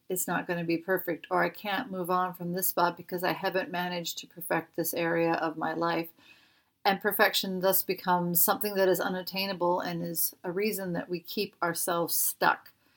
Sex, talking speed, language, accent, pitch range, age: female, 195 wpm, English, American, 175-210 Hz, 40-59